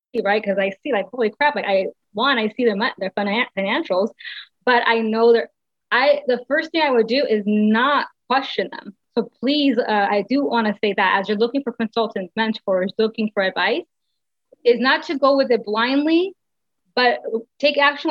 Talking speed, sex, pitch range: 190 wpm, female, 200-235 Hz